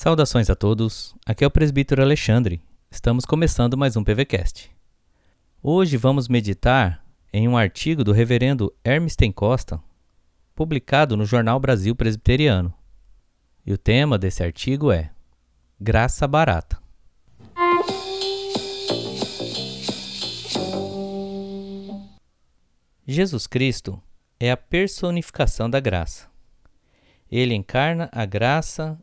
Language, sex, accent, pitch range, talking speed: Portuguese, male, Brazilian, 95-150 Hz, 95 wpm